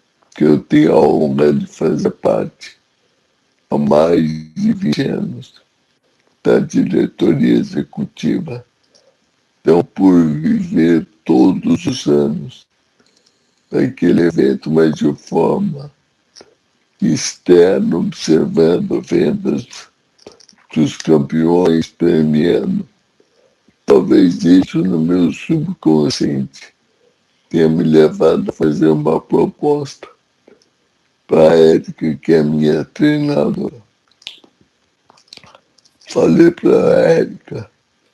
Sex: male